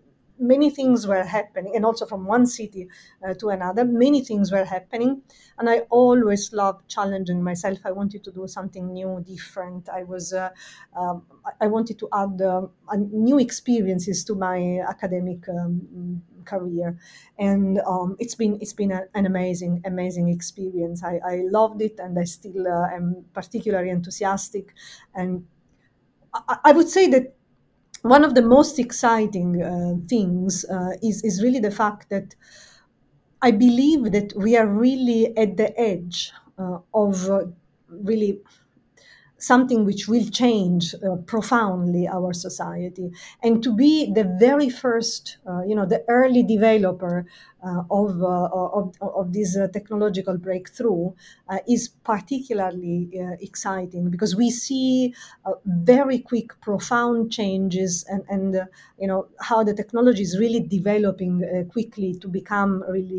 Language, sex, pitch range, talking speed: German, female, 180-225 Hz, 150 wpm